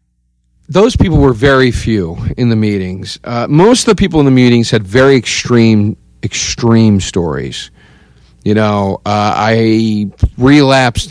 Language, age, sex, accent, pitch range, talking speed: English, 50-69, male, American, 100-125 Hz, 140 wpm